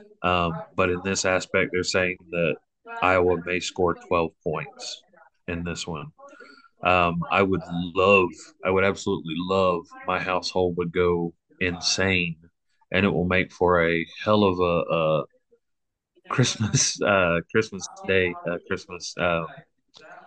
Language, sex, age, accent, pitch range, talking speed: English, male, 30-49, American, 85-95 Hz, 135 wpm